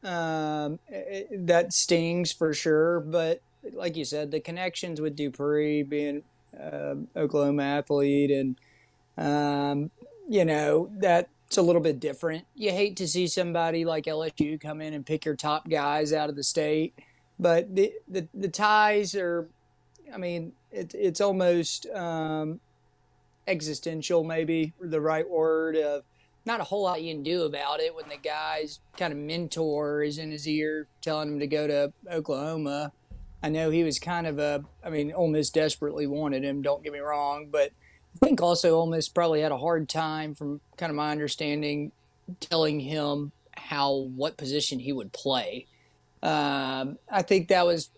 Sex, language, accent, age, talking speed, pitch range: male, English, American, 30-49, 170 wpm, 145-170 Hz